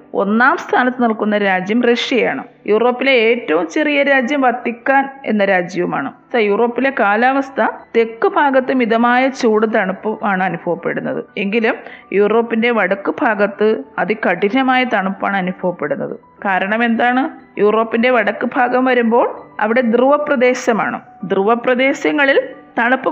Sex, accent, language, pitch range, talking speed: female, native, Malayalam, 225-265 Hz, 105 wpm